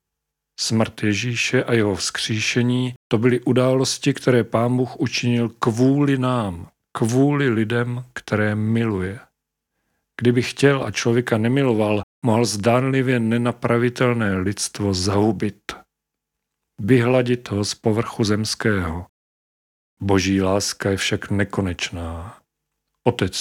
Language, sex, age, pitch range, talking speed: Czech, male, 40-59, 100-125 Hz, 100 wpm